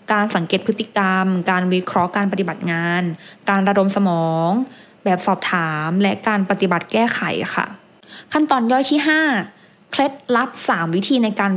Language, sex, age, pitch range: English, female, 20-39, 185-230 Hz